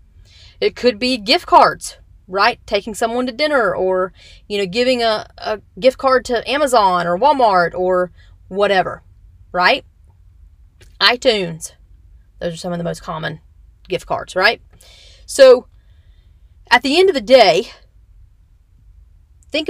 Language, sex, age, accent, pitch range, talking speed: English, female, 30-49, American, 180-265 Hz, 135 wpm